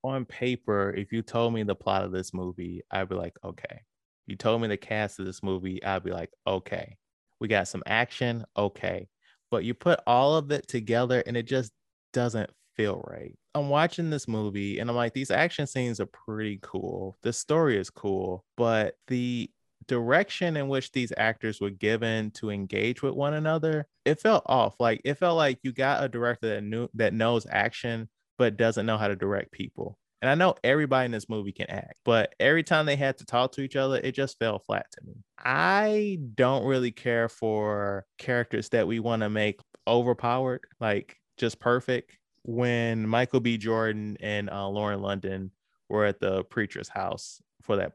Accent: American